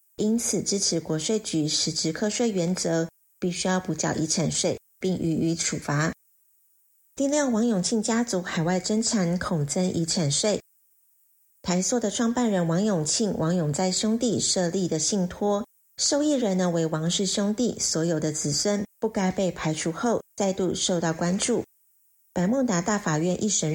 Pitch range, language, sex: 170-215 Hz, Chinese, female